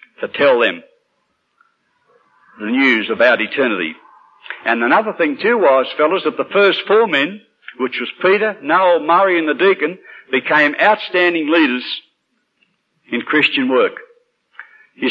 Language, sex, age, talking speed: English, male, 60-79, 130 wpm